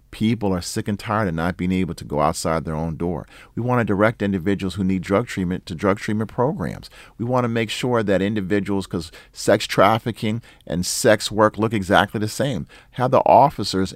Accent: American